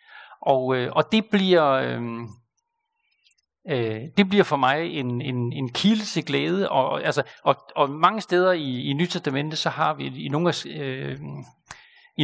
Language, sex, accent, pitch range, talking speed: Danish, male, native, 145-215 Hz, 165 wpm